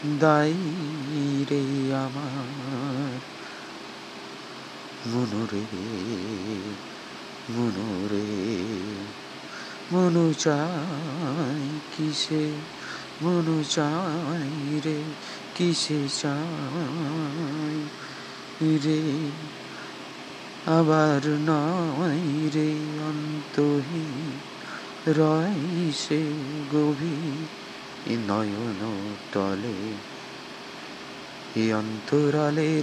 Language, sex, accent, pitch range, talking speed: Bengali, male, native, 115-155 Hz, 35 wpm